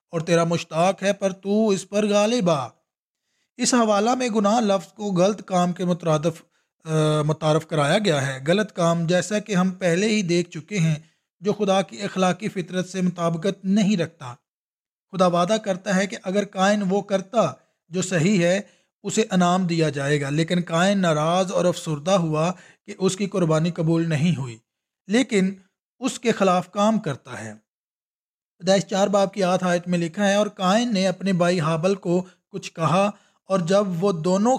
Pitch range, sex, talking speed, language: 170-205 Hz, male, 140 wpm, English